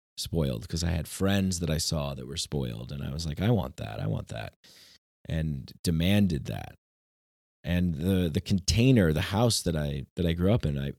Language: English